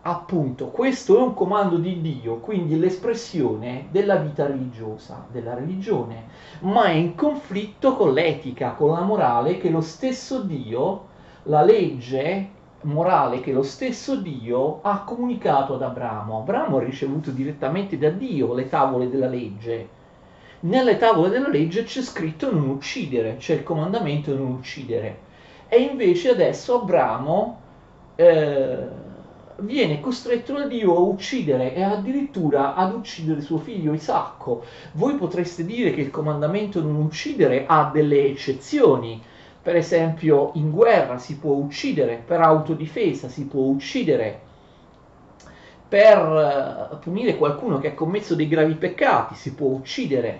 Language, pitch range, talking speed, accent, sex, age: Italian, 135-195 Hz, 135 wpm, native, male, 40-59